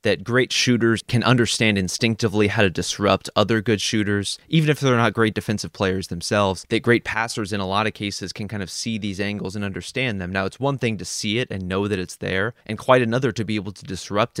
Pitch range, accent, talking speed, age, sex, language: 100-120 Hz, American, 240 wpm, 20-39, male, English